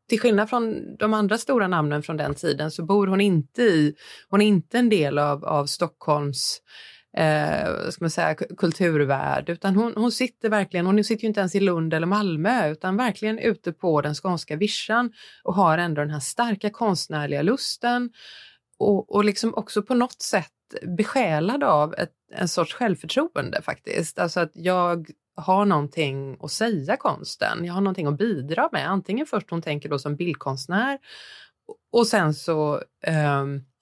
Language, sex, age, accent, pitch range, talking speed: Swedish, female, 30-49, native, 155-220 Hz, 170 wpm